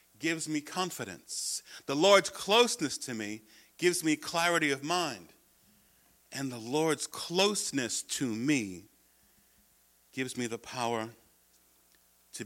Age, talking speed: 50-69, 115 wpm